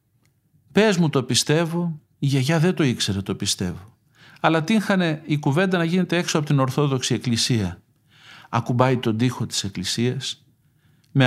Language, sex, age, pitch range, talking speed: Greek, male, 50-69, 115-155 Hz, 150 wpm